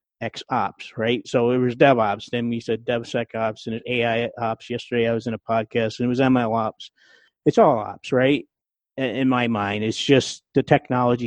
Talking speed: 190 wpm